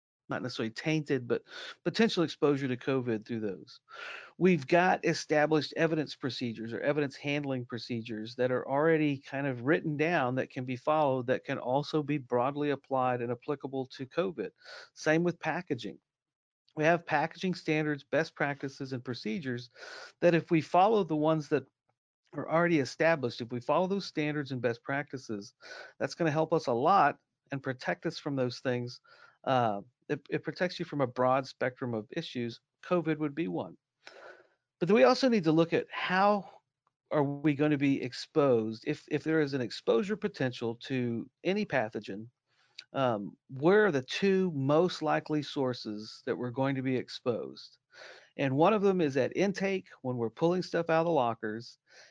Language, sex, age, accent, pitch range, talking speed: English, male, 50-69, American, 125-165 Hz, 175 wpm